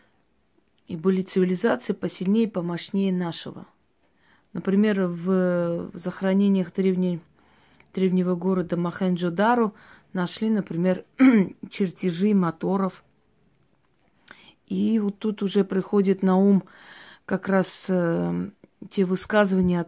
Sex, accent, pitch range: female, native, 170-200 Hz